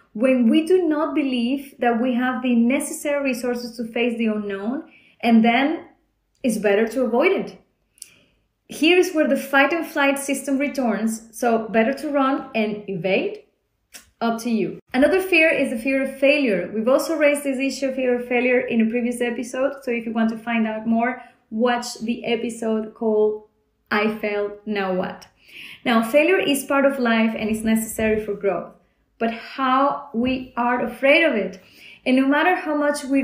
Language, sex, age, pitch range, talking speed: English, female, 20-39, 225-275 Hz, 180 wpm